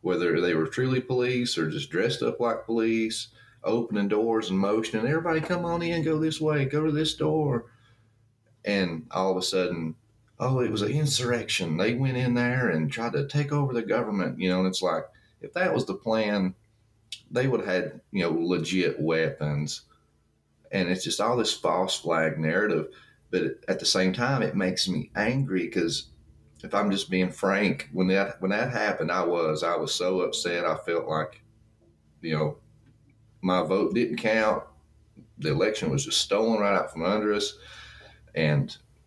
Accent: American